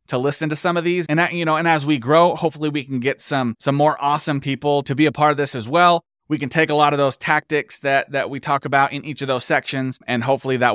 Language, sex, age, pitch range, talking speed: English, male, 30-49, 125-160 Hz, 290 wpm